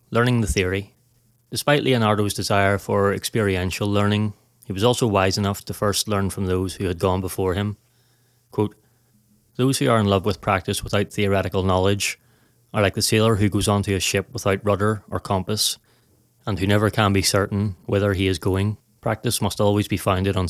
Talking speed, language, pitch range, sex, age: 185 wpm, English, 100-115 Hz, male, 30-49